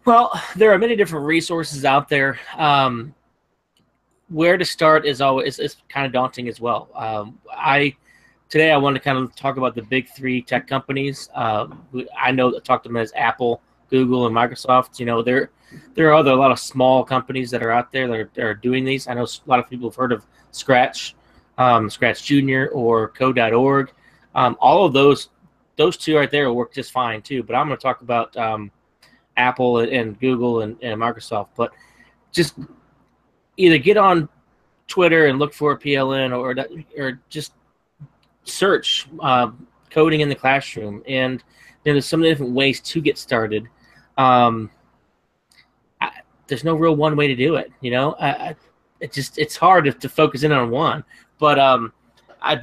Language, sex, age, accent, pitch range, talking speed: English, male, 20-39, American, 120-145 Hz, 185 wpm